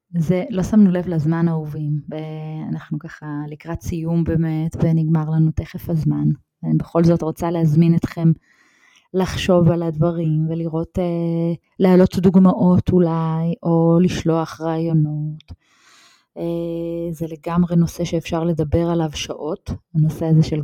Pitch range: 155-170 Hz